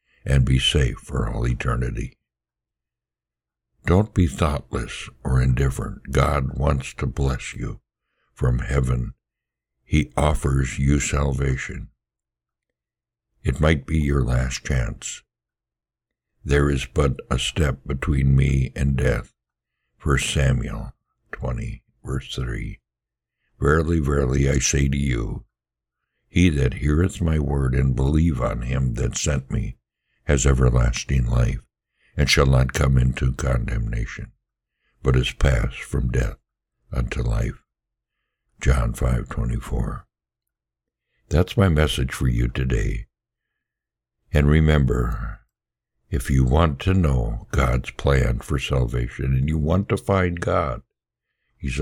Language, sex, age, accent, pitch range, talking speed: English, male, 60-79, American, 65-75 Hz, 120 wpm